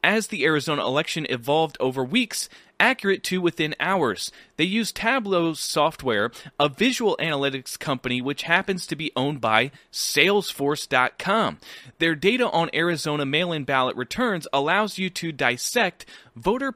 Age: 30-49